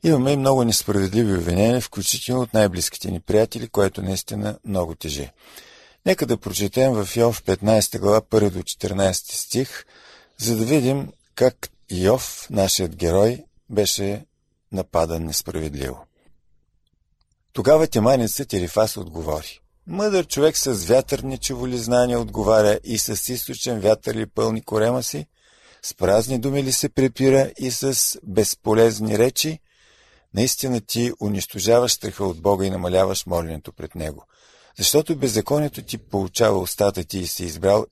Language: Bulgarian